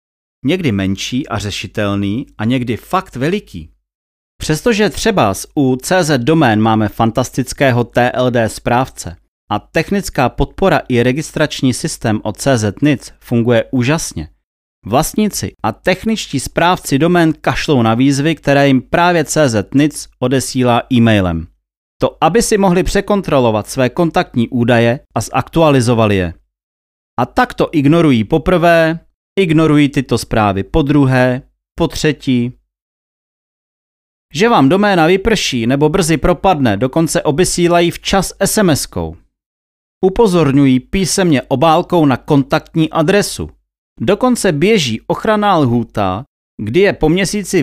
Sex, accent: male, native